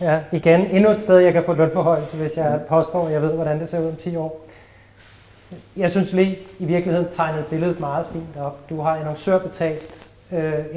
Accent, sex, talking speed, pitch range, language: native, male, 200 wpm, 150-180 Hz, Danish